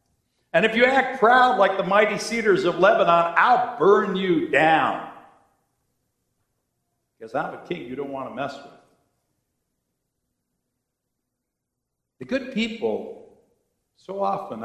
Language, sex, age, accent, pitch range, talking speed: English, male, 60-79, American, 170-245 Hz, 125 wpm